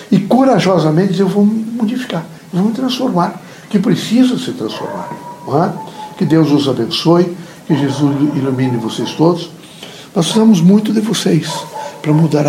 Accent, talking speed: Brazilian, 160 wpm